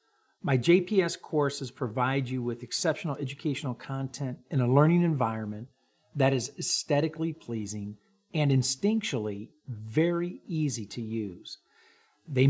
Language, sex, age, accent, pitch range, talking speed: English, male, 50-69, American, 125-170 Hz, 115 wpm